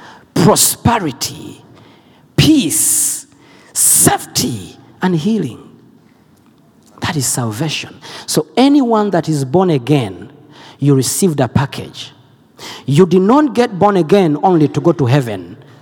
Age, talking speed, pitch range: 50-69, 110 wpm, 135-210 Hz